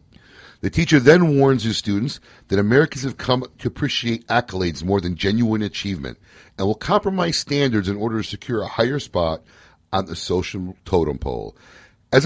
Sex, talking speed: male, 165 wpm